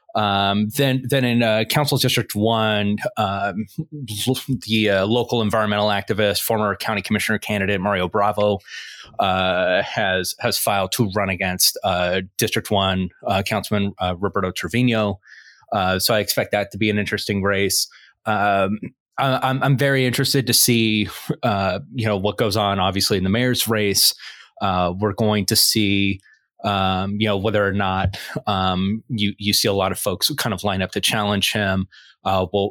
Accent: American